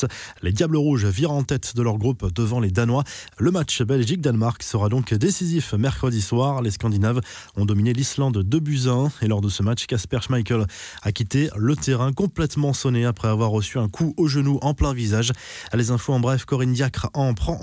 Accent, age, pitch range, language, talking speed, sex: French, 20-39, 110-140 Hz, French, 200 wpm, male